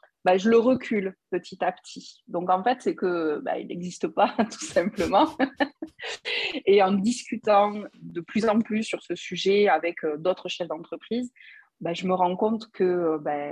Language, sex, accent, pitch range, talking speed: French, female, French, 175-220 Hz, 180 wpm